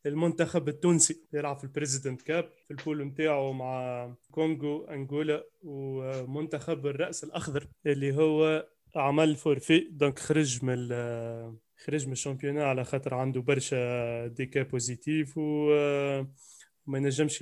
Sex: male